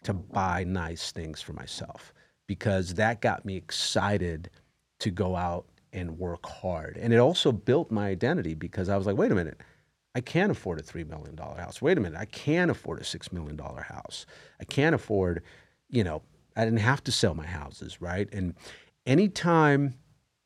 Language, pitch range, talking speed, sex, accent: English, 90-115 Hz, 180 wpm, male, American